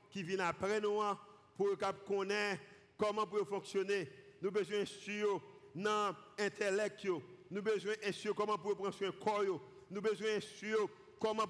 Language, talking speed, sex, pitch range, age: French, 150 wpm, male, 180-215 Hz, 50-69